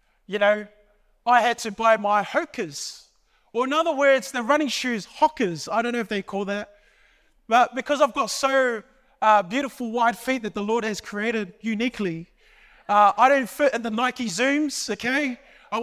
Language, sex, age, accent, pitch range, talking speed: English, male, 20-39, Australian, 215-265 Hz, 185 wpm